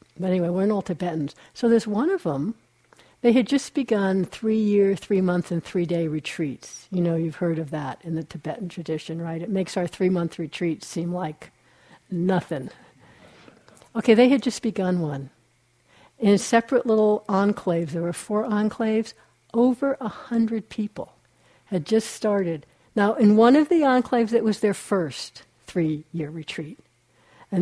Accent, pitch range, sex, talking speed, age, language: American, 180-255 Hz, female, 160 wpm, 60-79, English